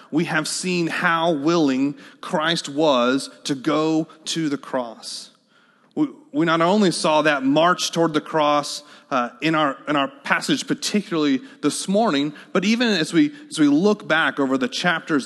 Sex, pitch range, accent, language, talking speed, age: male, 145-210 Hz, American, English, 140 wpm, 30-49